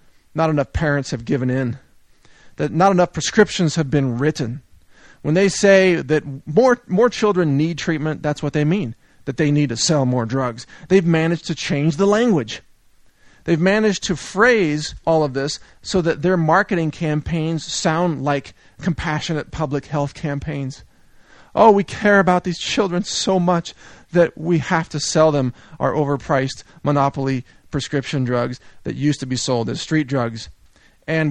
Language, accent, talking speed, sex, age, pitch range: English, American, 165 wpm, male, 40-59, 135-175 Hz